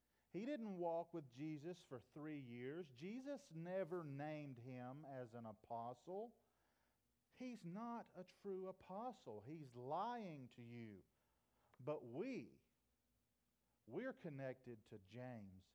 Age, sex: 40-59, male